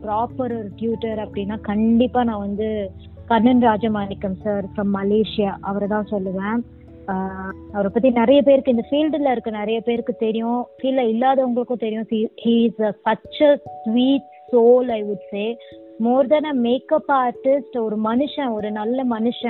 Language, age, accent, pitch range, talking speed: Tamil, 20-39, native, 215-255 Hz, 130 wpm